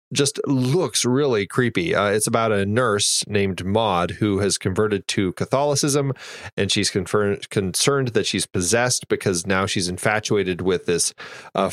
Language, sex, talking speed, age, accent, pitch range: English, male, 155 wpm, 30-49, American, 95-125 Hz